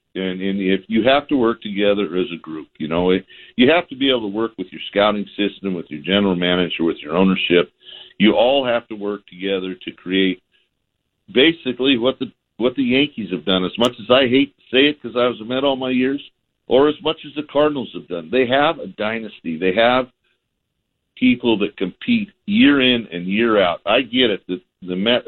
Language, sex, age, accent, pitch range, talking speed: English, male, 50-69, American, 100-130 Hz, 220 wpm